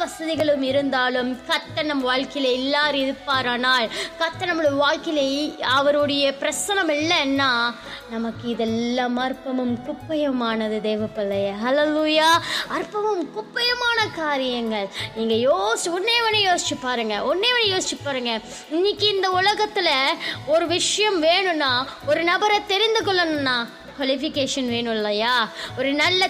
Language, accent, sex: Tamil, native, female